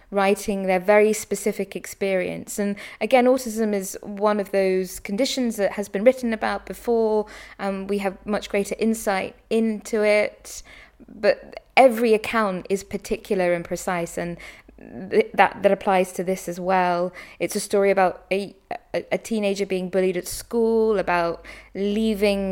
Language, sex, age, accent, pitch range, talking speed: English, female, 20-39, British, 185-215 Hz, 150 wpm